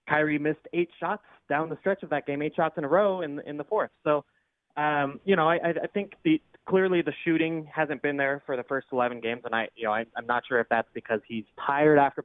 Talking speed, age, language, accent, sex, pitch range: 260 wpm, 20-39, English, American, male, 120-150 Hz